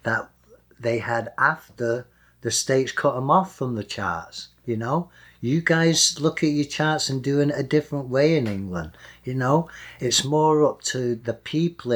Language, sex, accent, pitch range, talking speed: English, male, British, 110-130 Hz, 180 wpm